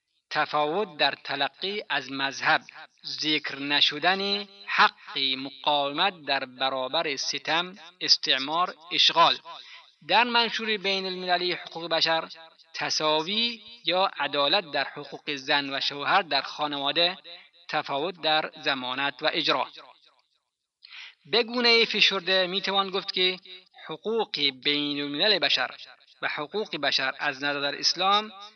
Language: Persian